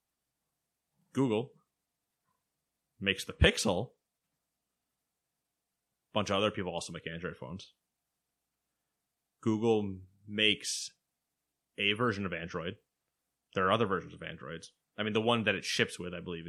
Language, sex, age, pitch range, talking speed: English, male, 20-39, 90-115 Hz, 125 wpm